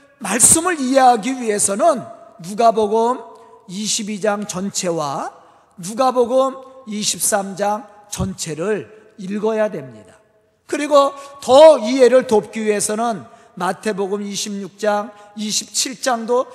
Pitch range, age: 200-265 Hz, 40-59